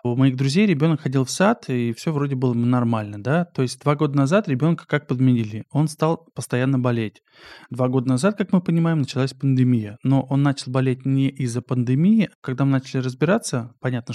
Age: 20-39